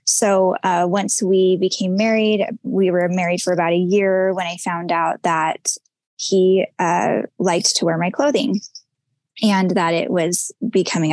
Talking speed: 160 wpm